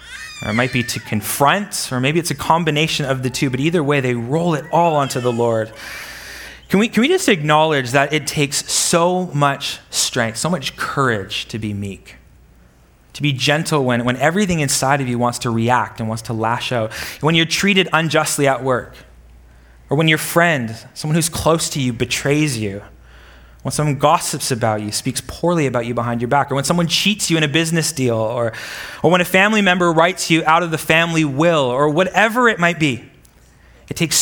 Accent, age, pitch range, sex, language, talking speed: American, 20-39, 115-155 Hz, male, English, 205 wpm